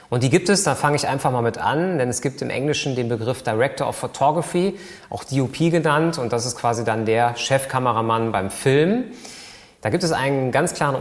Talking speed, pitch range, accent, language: 215 wpm, 110-145 Hz, German, German